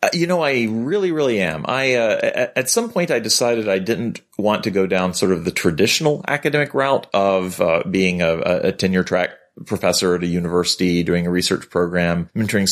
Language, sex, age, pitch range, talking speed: English, male, 30-49, 90-120 Hz, 195 wpm